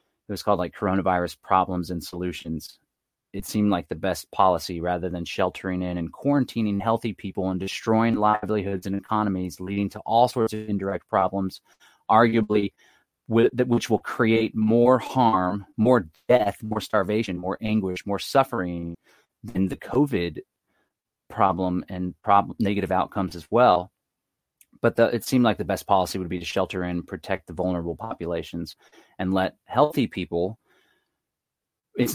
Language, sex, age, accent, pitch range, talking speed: English, male, 30-49, American, 90-115 Hz, 145 wpm